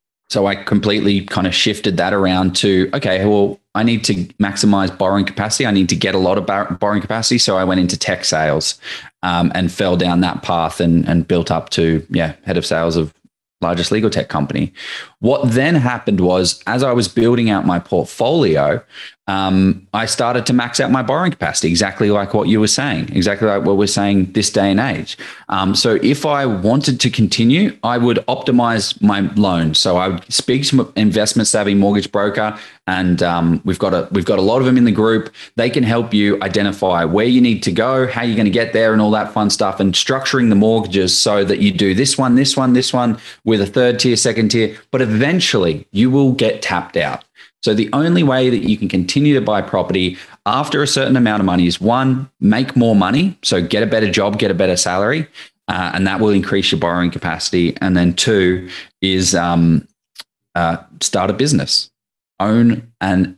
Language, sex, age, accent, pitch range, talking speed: English, male, 20-39, Australian, 95-120 Hz, 210 wpm